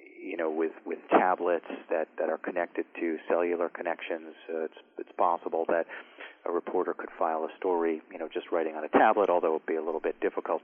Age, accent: 40-59, American